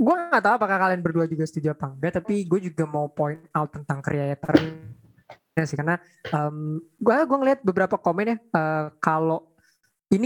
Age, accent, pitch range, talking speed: 20-39, native, 150-180 Hz, 165 wpm